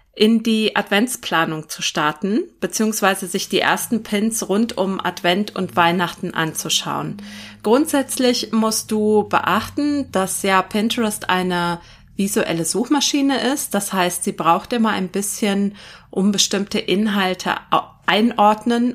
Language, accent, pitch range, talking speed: German, German, 185-230 Hz, 120 wpm